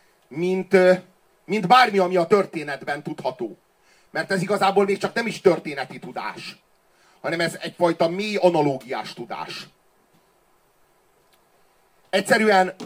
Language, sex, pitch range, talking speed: Hungarian, male, 175-210 Hz, 105 wpm